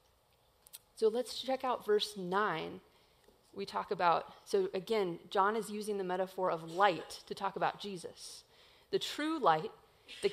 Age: 30-49